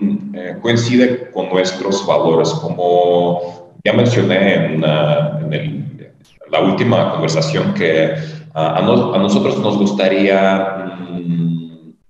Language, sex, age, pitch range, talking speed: Spanish, male, 40-59, 85-105 Hz, 125 wpm